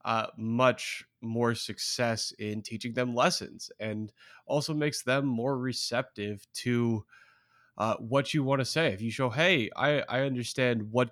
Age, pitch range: 20-39, 110-135 Hz